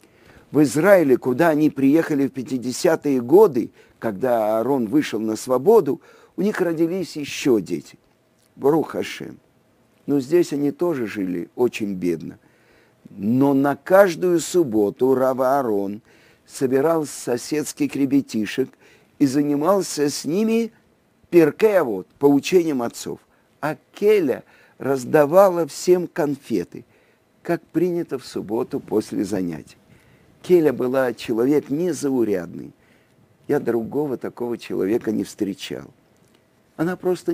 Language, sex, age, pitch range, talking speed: Russian, male, 50-69, 130-175 Hz, 110 wpm